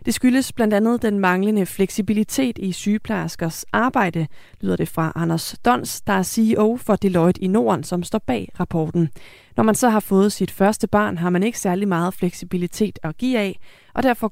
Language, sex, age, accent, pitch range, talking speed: Danish, female, 30-49, native, 175-220 Hz, 190 wpm